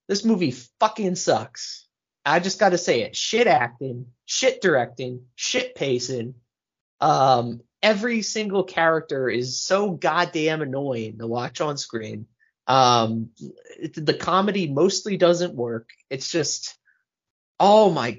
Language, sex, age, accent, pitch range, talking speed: English, male, 30-49, American, 130-190 Hz, 130 wpm